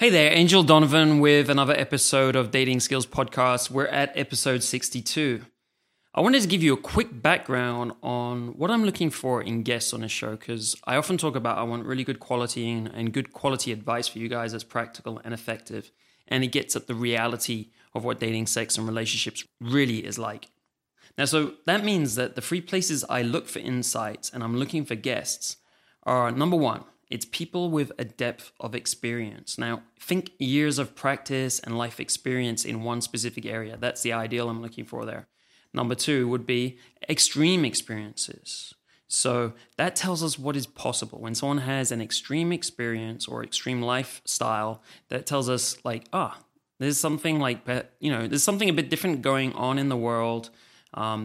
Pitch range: 115-140 Hz